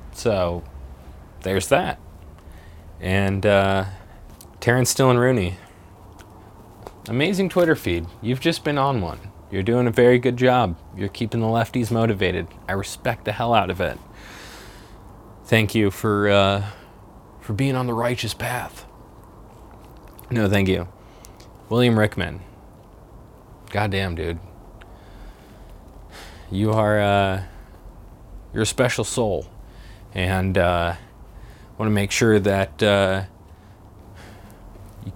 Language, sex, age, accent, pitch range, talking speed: English, male, 20-39, American, 95-120 Hz, 115 wpm